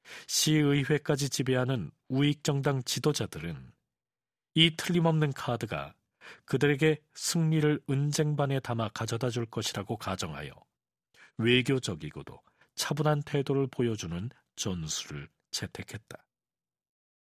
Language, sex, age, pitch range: Korean, male, 40-59, 120-155 Hz